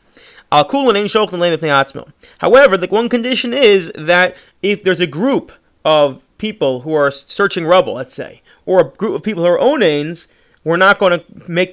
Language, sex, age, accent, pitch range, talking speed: English, male, 30-49, American, 150-195 Hz, 185 wpm